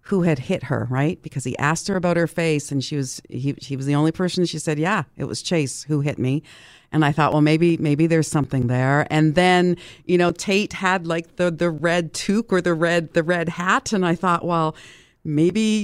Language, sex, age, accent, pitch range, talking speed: English, female, 50-69, American, 160-230 Hz, 230 wpm